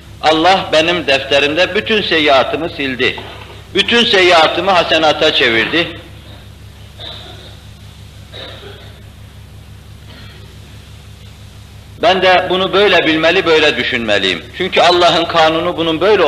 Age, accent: 50-69, native